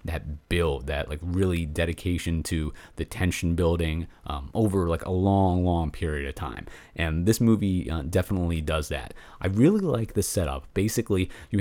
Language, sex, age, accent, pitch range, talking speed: English, male, 30-49, American, 80-100 Hz, 170 wpm